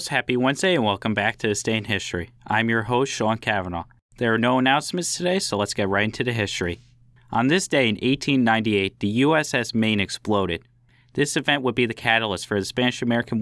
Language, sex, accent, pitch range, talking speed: English, male, American, 105-125 Hz, 200 wpm